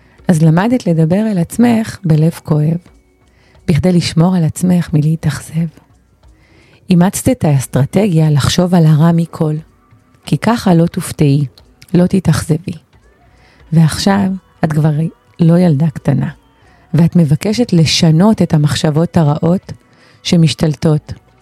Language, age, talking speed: Hebrew, 30-49, 105 wpm